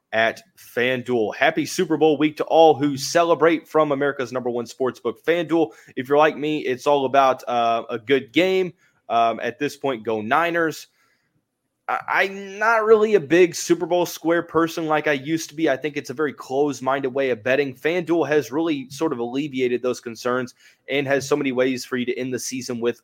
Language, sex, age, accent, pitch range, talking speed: English, male, 20-39, American, 125-155 Hz, 200 wpm